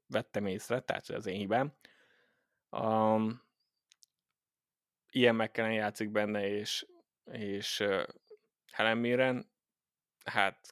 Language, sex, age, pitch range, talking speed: Hungarian, male, 20-39, 100-115 Hz, 100 wpm